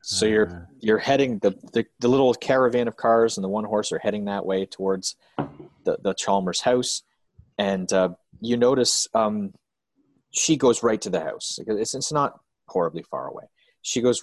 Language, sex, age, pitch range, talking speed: English, male, 30-49, 95-125 Hz, 175 wpm